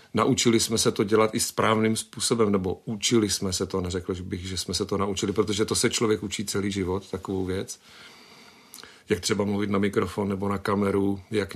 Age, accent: 40-59, native